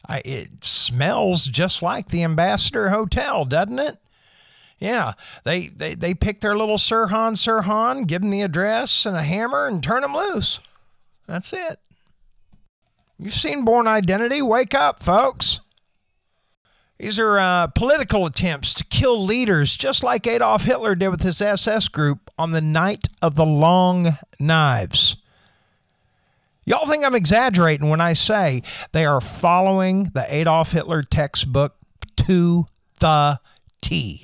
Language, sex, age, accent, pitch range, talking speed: English, male, 50-69, American, 145-205 Hz, 145 wpm